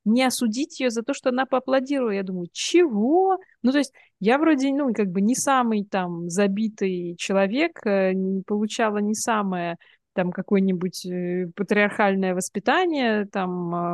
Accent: native